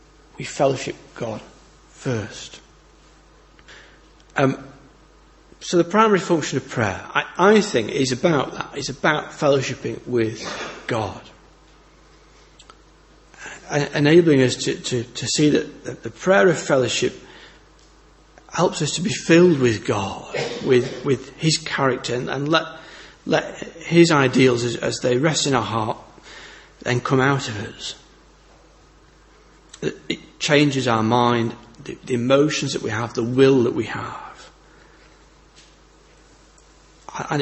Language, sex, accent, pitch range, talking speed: English, male, British, 125-155 Hz, 125 wpm